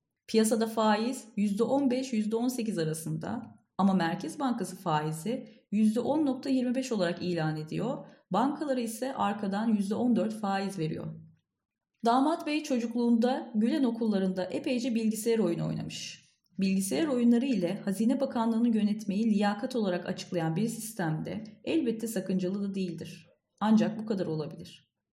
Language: Turkish